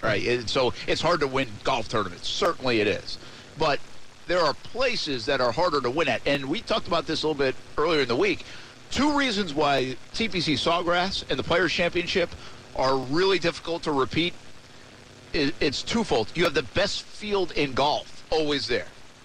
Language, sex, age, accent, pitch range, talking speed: English, male, 50-69, American, 125-175 Hz, 180 wpm